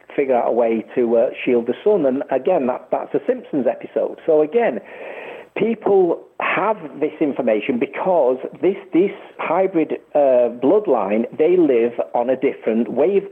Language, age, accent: English, 50-69, British